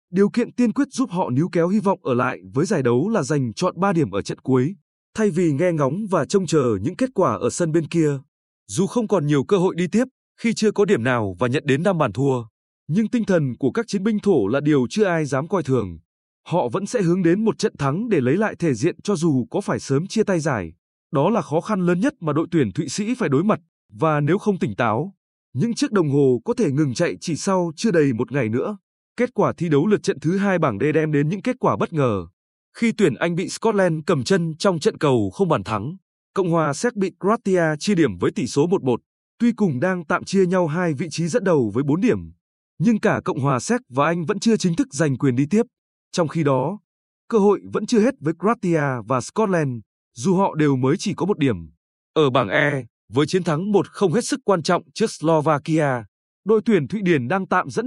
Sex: male